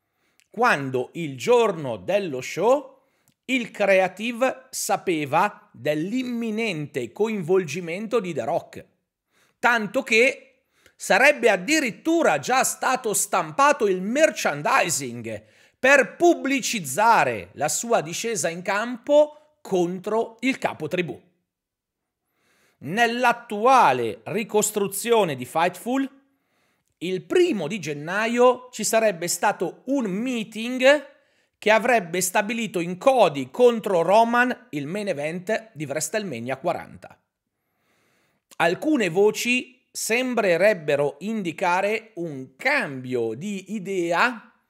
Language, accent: Italian, native